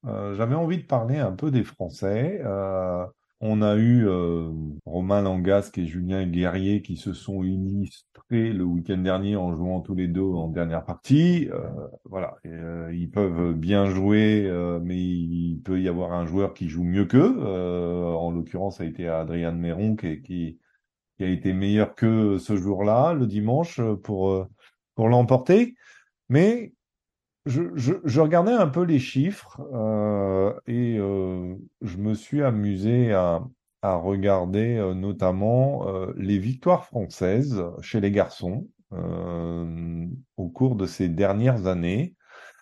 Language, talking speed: French, 155 wpm